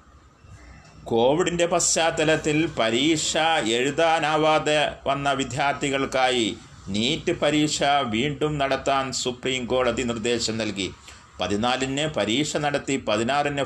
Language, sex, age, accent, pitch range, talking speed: Malayalam, male, 30-49, native, 120-145 Hz, 75 wpm